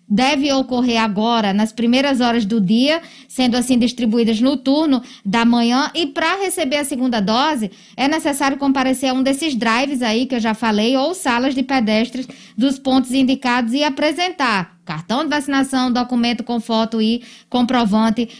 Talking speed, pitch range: 165 wpm, 225-270 Hz